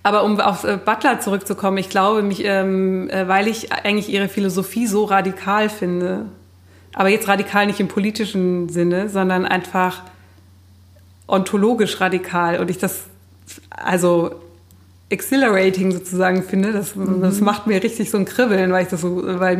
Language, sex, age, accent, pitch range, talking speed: German, female, 20-39, German, 175-205 Hz, 145 wpm